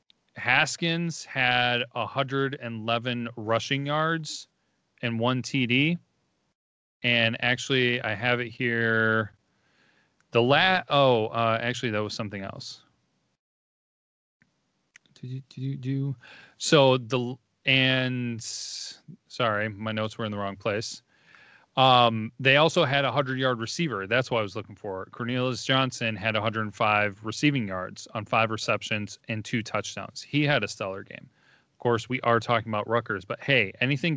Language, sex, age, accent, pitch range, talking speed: English, male, 30-49, American, 110-135 Hz, 135 wpm